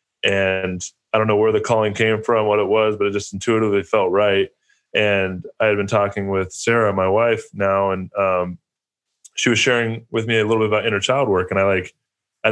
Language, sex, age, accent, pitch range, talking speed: English, male, 20-39, American, 100-115 Hz, 220 wpm